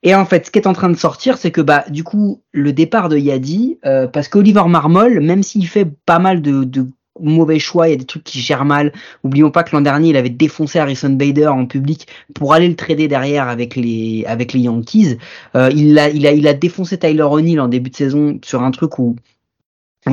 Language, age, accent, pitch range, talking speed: French, 30-49, French, 130-160 Hz, 240 wpm